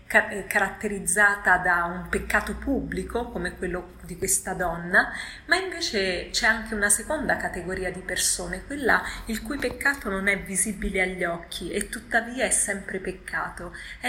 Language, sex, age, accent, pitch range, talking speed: Italian, female, 30-49, native, 185-215 Hz, 145 wpm